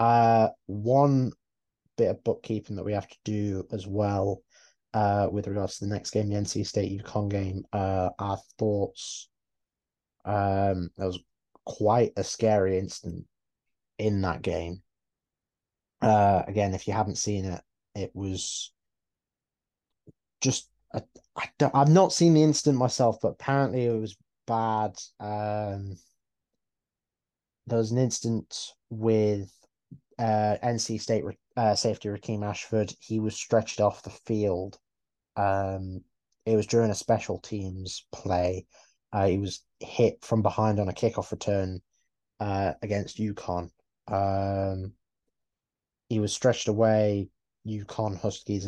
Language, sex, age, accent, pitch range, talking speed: English, male, 20-39, British, 95-115 Hz, 135 wpm